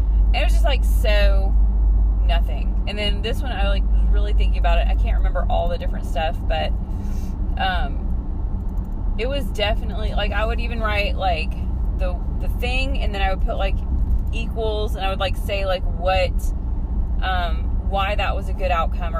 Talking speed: 185 wpm